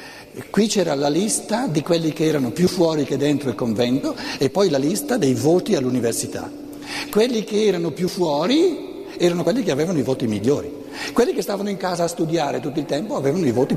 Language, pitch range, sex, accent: Italian, 125-185 Hz, male, native